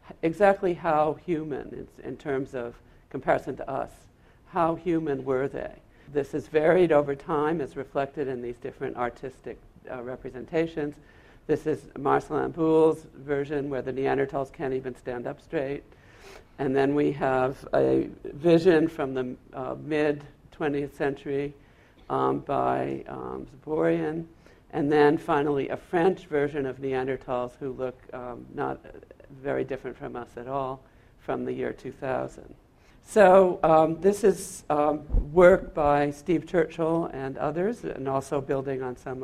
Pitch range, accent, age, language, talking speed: 130-160 Hz, American, 60-79, English, 145 wpm